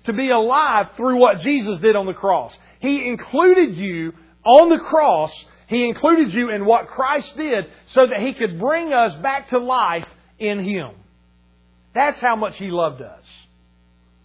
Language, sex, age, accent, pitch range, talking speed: English, male, 40-59, American, 175-260 Hz, 170 wpm